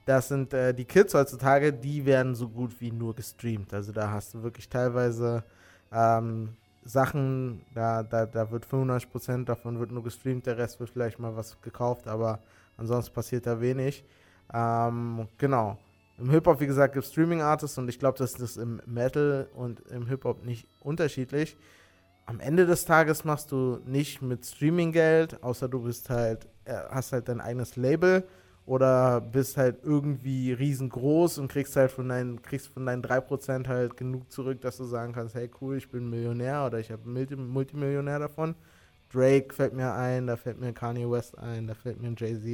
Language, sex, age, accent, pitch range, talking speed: German, male, 20-39, German, 115-140 Hz, 180 wpm